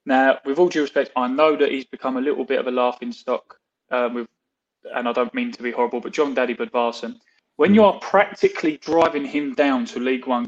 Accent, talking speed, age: British, 225 wpm, 20-39